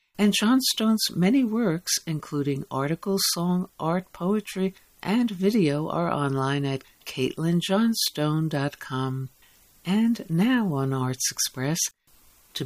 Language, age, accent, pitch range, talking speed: English, 60-79, American, 145-200 Hz, 100 wpm